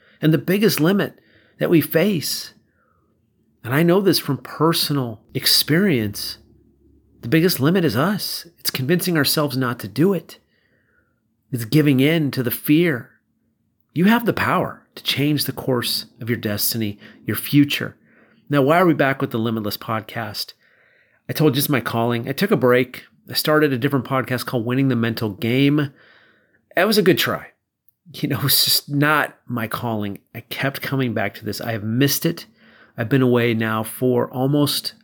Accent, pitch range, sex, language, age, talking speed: American, 120-155 Hz, male, English, 40-59, 175 wpm